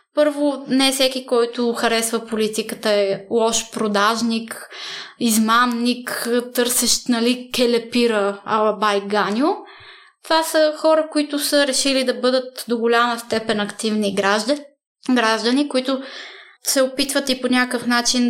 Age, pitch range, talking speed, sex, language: 20-39, 225-255 Hz, 120 wpm, female, Bulgarian